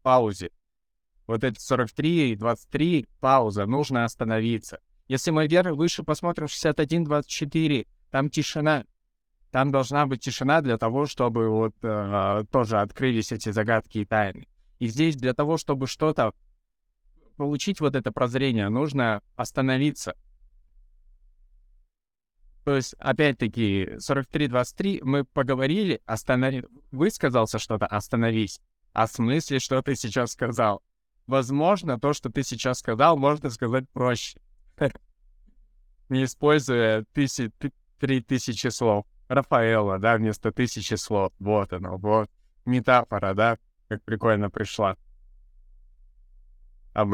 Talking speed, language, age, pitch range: 110 wpm, Russian, 20-39, 100-135 Hz